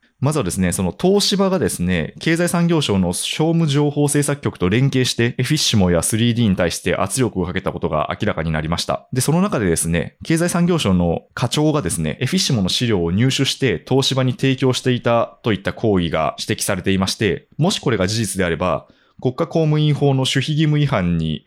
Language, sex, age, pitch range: Japanese, male, 20-39, 95-145 Hz